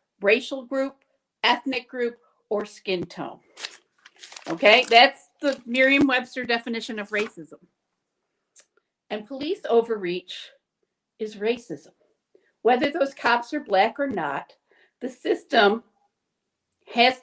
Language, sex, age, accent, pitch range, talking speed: English, female, 50-69, American, 205-265 Hz, 100 wpm